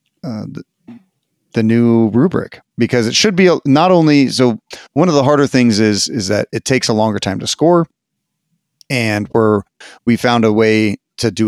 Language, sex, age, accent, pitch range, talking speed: English, male, 30-49, American, 110-135 Hz, 190 wpm